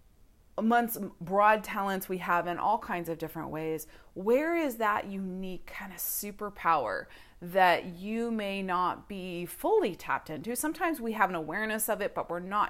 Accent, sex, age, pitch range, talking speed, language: American, female, 30-49, 170-205 Hz, 170 wpm, English